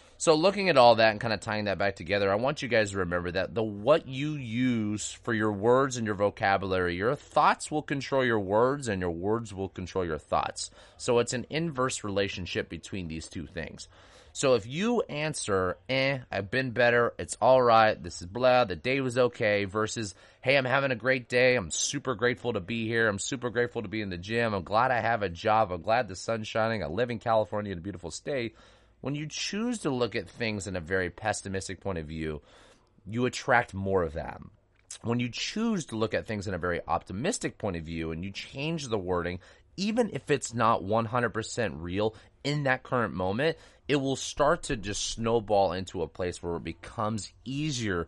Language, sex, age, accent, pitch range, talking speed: English, male, 30-49, American, 95-125 Hz, 210 wpm